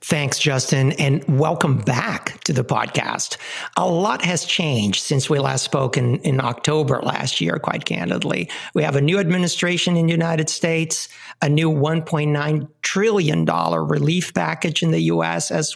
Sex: male